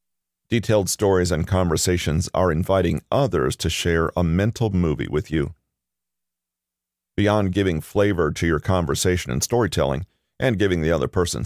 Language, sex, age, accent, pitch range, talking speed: English, male, 40-59, American, 75-105 Hz, 140 wpm